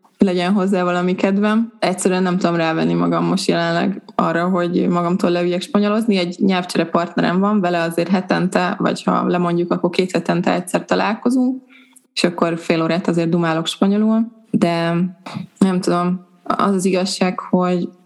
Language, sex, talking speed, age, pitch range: Hungarian, female, 150 wpm, 20-39, 175-205 Hz